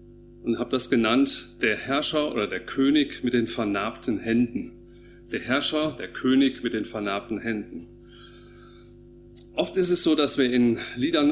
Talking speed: 155 wpm